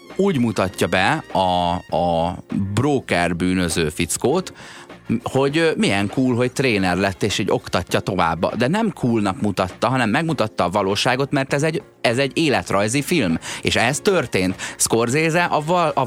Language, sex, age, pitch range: Hungarian, male, 30-49, 95-125 Hz